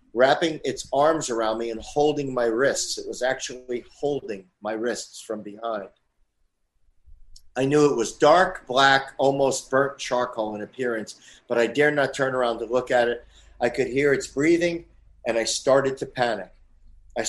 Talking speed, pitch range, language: 170 wpm, 110-140 Hz, English